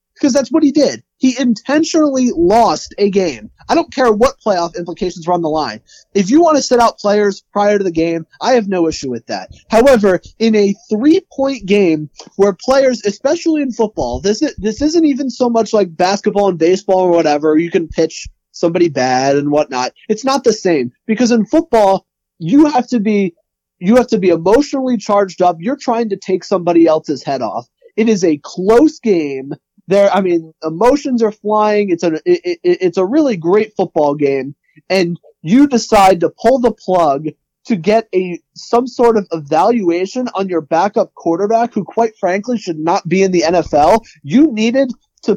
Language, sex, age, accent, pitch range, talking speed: English, male, 30-49, American, 175-245 Hz, 190 wpm